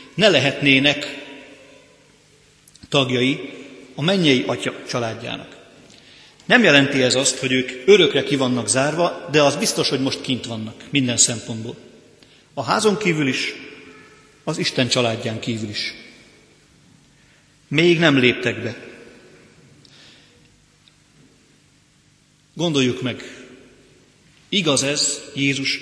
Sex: male